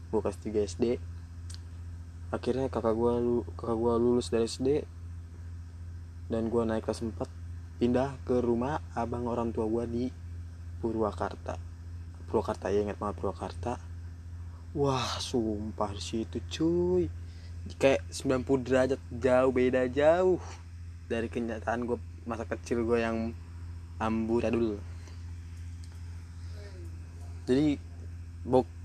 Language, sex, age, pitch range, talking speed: Indonesian, male, 20-39, 85-115 Hz, 105 wpm